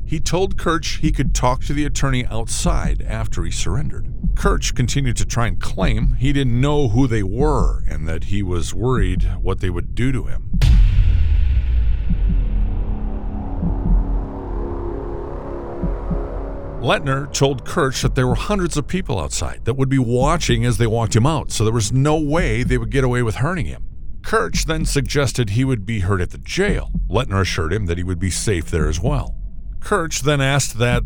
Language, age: English, 50-69